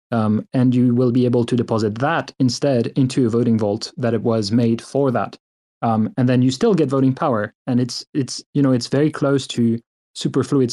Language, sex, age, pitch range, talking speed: English, male, 30-49, 115-140 Hz, 215 wpm